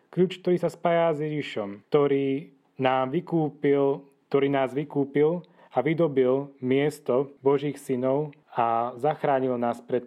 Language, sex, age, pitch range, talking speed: Czech, male, 30-49, 130-160 Hz, 115 wpm